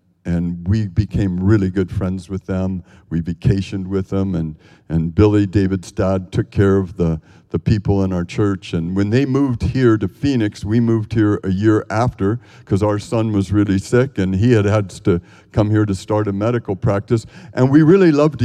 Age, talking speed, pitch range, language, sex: 60-79, 200 wpm, 95-120 Hz, English, male